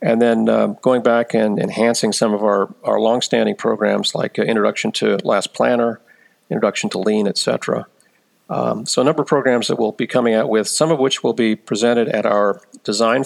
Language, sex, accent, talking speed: English, male, American, 205 wpm